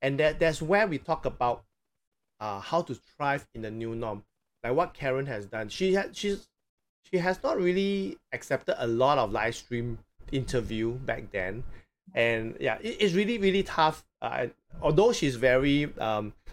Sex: male